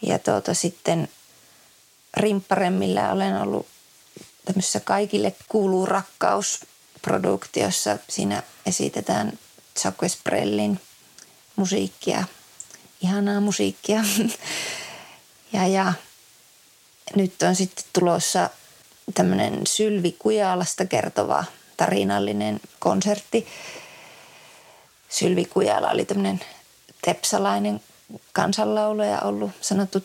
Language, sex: Finnish, female